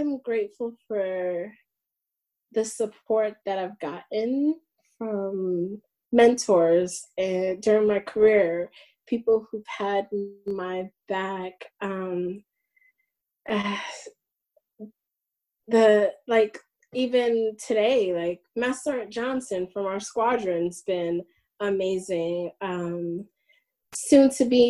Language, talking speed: English, 85 wpm